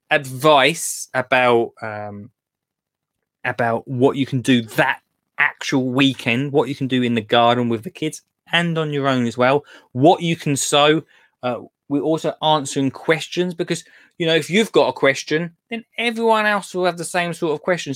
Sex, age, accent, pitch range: male, 20-39, British, 120-165 Hz